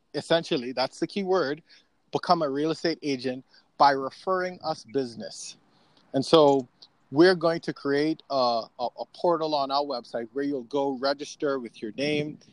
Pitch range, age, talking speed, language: 130-160 Hz, 30-49, 165 wpm, English